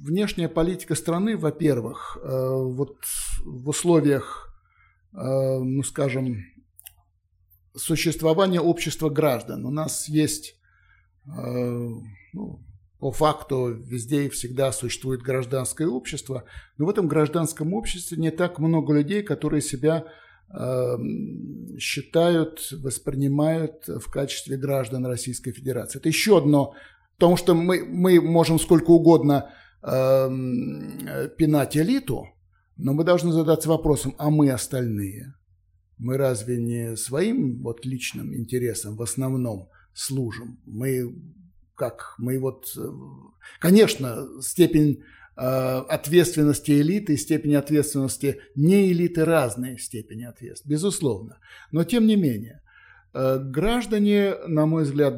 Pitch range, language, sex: 125-160 Hz, Russian, male